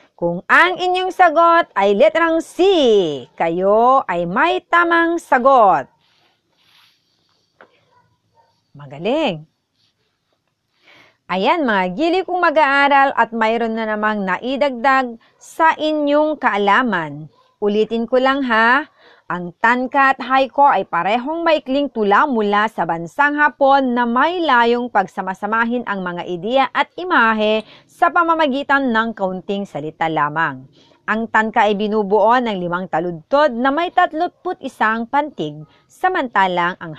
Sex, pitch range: female, 185-295 Hz